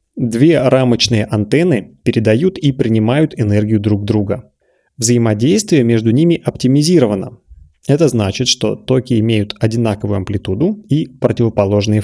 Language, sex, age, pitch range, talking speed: Russian, male, 30-49, 110-130 Hz, 110 wpm